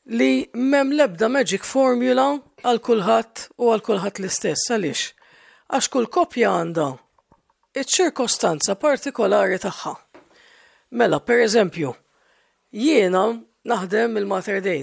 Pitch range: 195-290 Hz